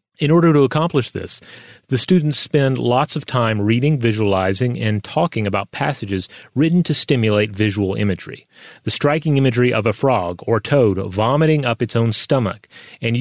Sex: male